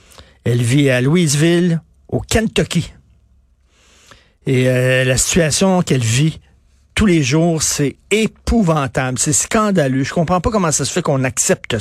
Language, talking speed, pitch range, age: French, 140 wpm, 105-165 Hz, 50-69